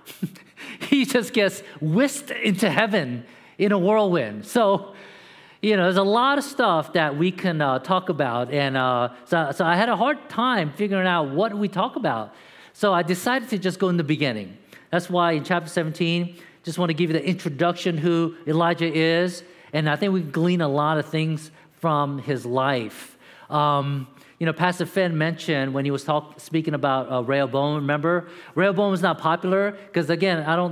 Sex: male